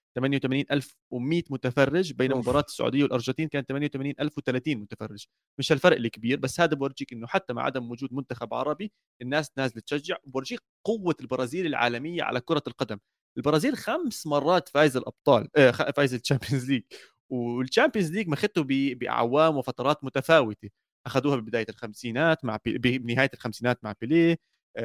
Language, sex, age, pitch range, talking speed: Arabic, male, 30-49, 125-160 Hz, 135 wpm